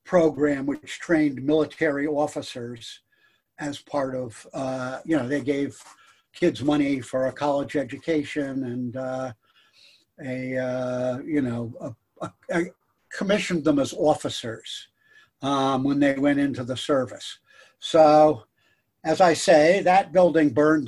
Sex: male